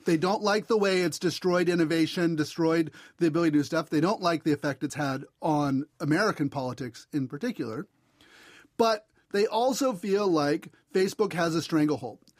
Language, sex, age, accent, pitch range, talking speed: English, male, 40-59, American, 155-210 Hz, 170 wpm